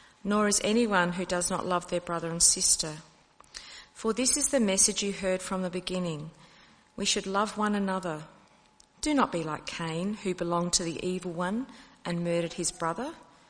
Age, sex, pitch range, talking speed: 40-59, female, 175-210 Hz, 180 wpm